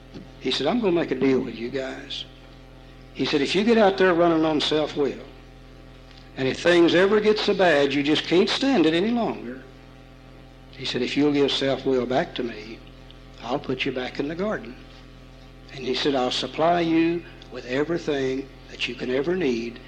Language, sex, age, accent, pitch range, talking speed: English, male, 60-79, American, 130-165 Hz, 195 wpm